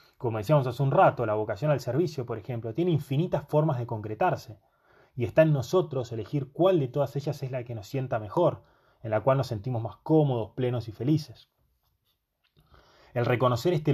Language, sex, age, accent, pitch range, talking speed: Spanish, male, 20-39, Argentinian, 115-150 Hz, 190 wpm